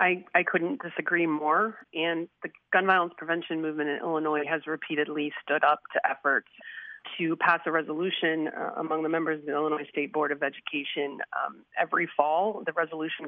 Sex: female